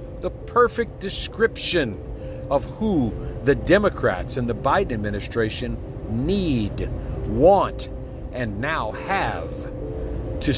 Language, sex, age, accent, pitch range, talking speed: English, male, 50-69, American, 115-180 Hz, 95 wpm